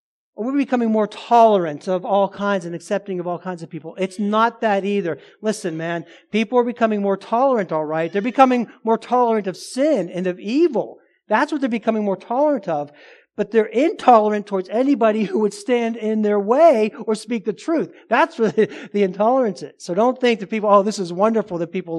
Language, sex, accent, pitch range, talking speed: English, male, American, 170-220 Hz, 205 wpm